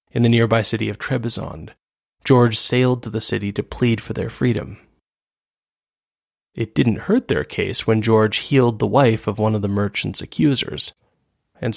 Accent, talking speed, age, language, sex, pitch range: American, 170 wpm, 30-49, English, male, 105-120 Hz